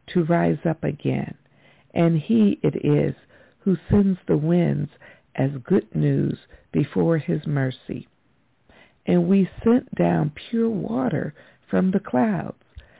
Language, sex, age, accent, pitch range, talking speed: English, female, 60-79, American, 155-210 Hz, 125 wpm